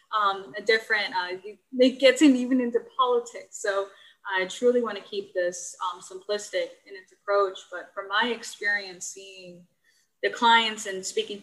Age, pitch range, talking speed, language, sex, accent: 20-39, 185-255 Hz, 165 wpm, English, female, American